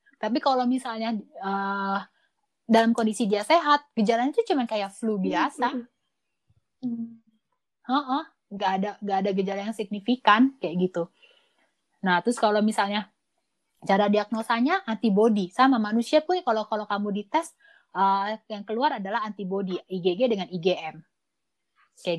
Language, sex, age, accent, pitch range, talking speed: Indonesian, female, 20-39, native, 205-275 Hz, 125 wpm